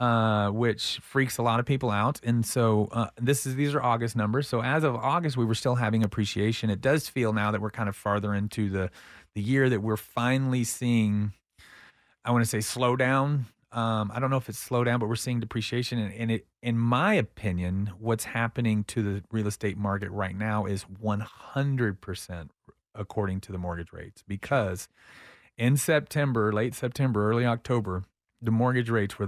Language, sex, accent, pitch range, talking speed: English, male, American, 100-120 Hz, 205 wpm